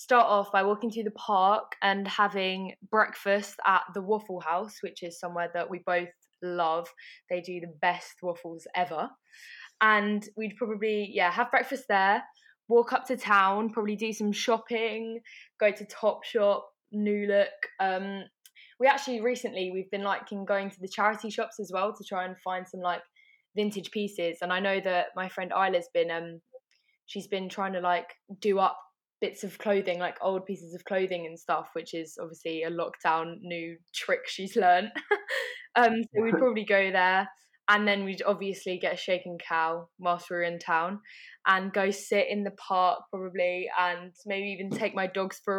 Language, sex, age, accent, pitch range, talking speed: English, female, 10-29, British, 180-220 Hz, 180 wpm